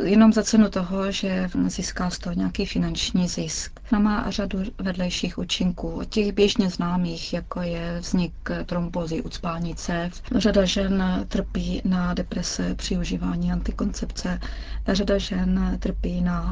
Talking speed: 140 wpm